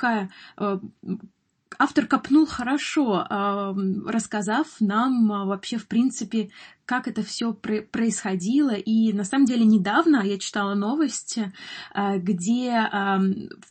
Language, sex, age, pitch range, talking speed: Russian, female, 20-39, 200-235 Hz, 95 wpm